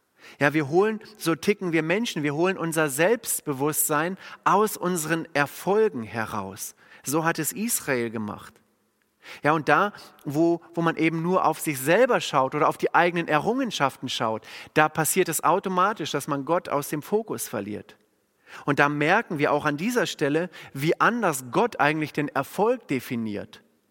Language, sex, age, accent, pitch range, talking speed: German, male, 40-59, German, 145-180 Hz, 160 wpm